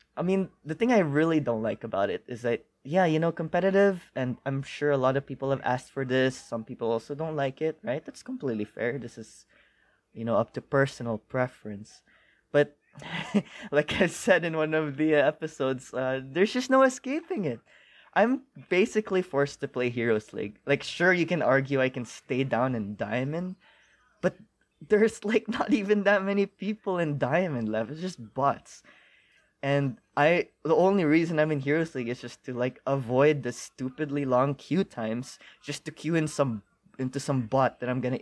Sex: male